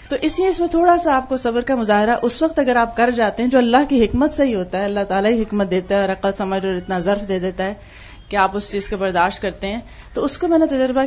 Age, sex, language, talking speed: 30-49, female, Urdu, 305 wpm